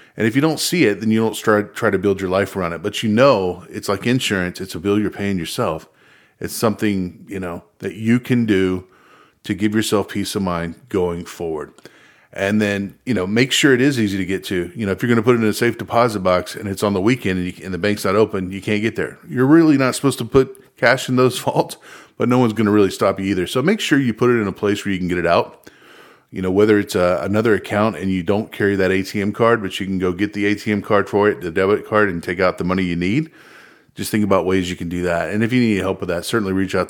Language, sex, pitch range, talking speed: English, male, 90-110 Hz, 280 wpm